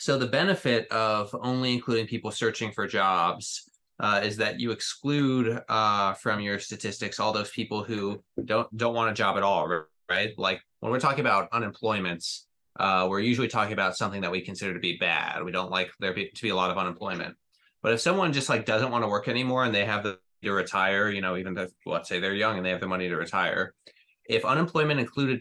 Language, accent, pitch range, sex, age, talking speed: English, American, 95-120 Hz, male, 20-39, 220 wpm